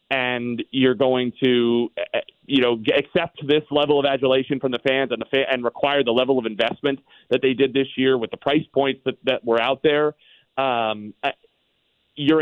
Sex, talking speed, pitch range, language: male, 190 wpm, 125-155 Hz, English